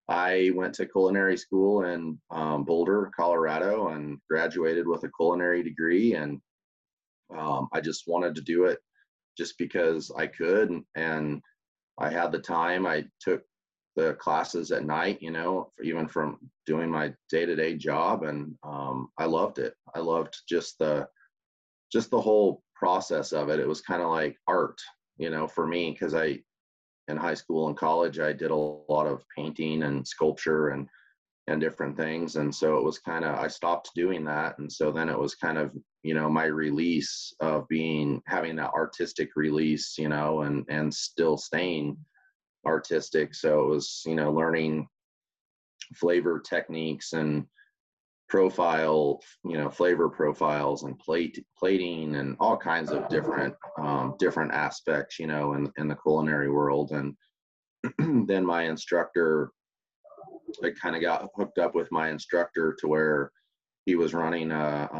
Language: English